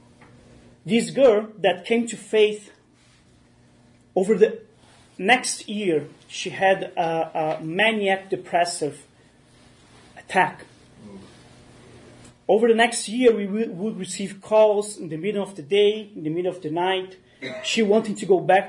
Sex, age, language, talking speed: male, 30-49, English, 135 wpm